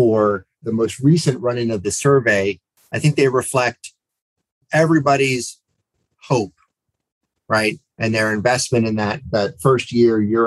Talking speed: 140 wpm